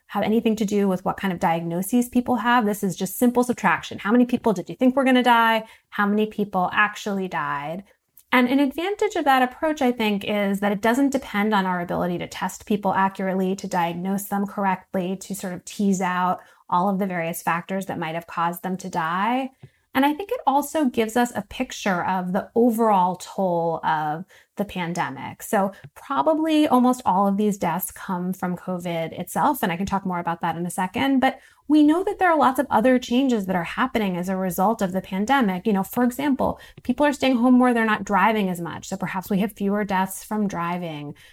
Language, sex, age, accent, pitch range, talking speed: English, female, 20-39, American, 185-245 Hz, 220 wpm